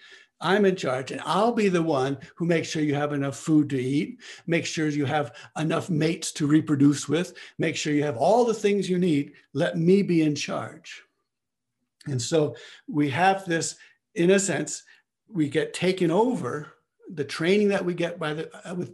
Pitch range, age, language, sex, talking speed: 145-175 Hz, 60-79, English, male, 190 wpm